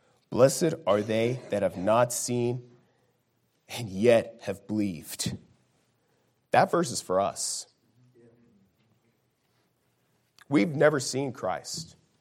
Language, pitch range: English, 120-165 Hz